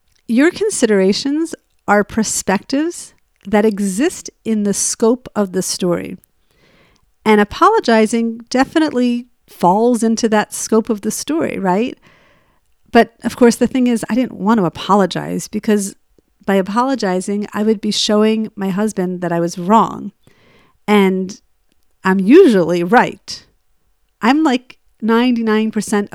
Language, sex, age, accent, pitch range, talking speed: English, female, 50-69, American, 205-250 Hz, 125 wpm